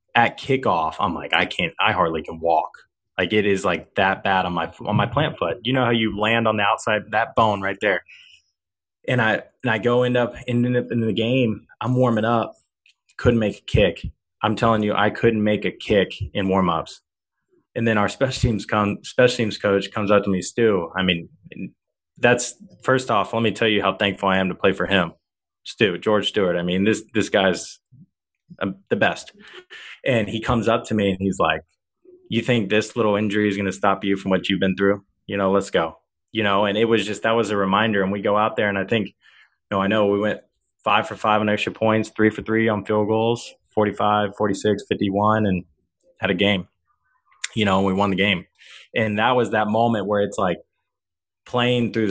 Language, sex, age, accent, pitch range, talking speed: English, male, 20-39, American, 100-115 Hz, 220 wpm